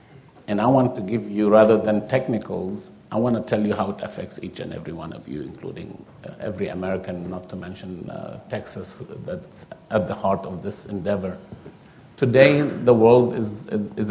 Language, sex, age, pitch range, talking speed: English, male, 50-69, 105-130 Hz, 185 wpm